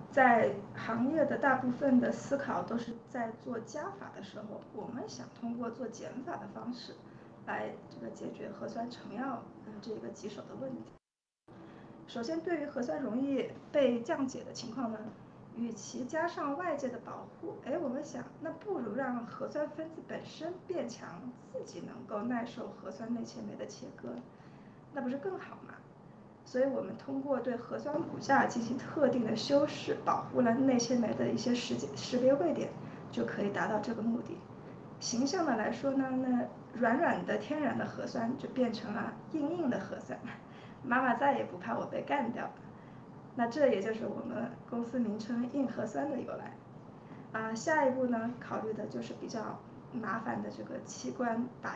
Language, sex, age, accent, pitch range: Chinese, female, 20-39, native, 235-280 Hz